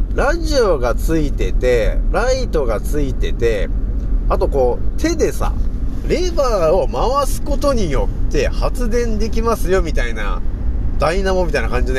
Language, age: Japanese, 40-59